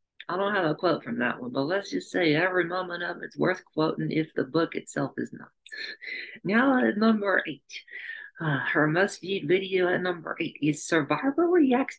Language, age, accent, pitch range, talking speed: English, 50-69, American, 160-235 Hz, 195 wpm